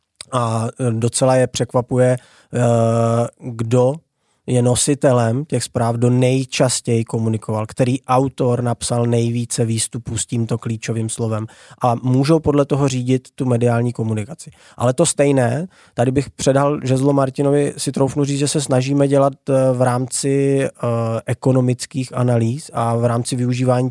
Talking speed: 130 wpm